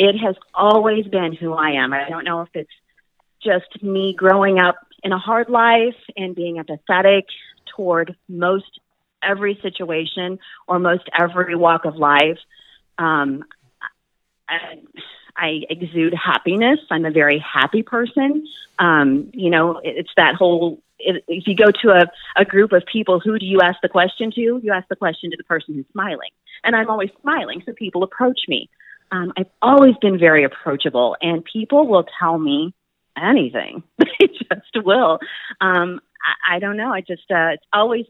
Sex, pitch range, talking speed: female, 160-200 Hz, 170 wpm